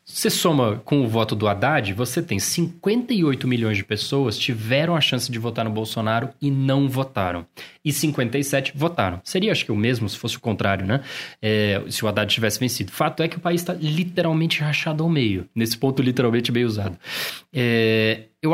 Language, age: Portuguese, 20-39